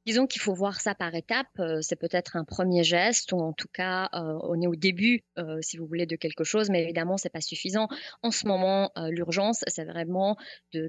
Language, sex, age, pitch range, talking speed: French, female, 30-49, 165-195 Hz, 225 wpm